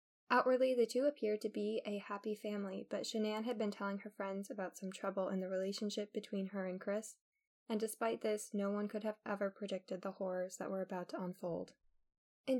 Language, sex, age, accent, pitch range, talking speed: English, female, 10-29, American, 200-230 Hz, 205 wpm